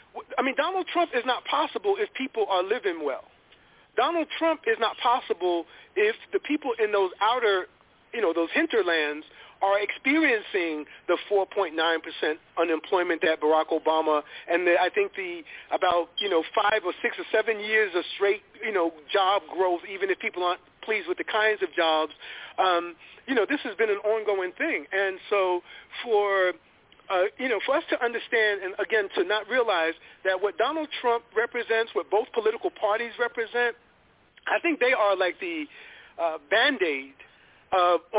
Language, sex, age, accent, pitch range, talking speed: English, male, 40-59, American, 175-240 Hz, 170 wpm